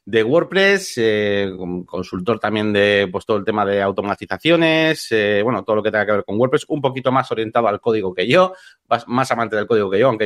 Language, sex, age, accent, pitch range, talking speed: Spanish, male, 30-49, Spanish, 105-145 Hz, 220 wpm